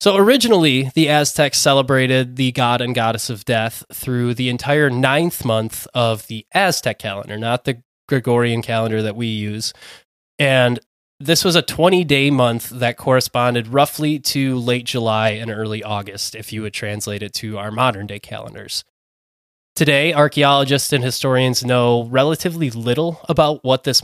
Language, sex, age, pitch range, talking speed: English, male, 20-39, 115-140 Hz, 155 wpm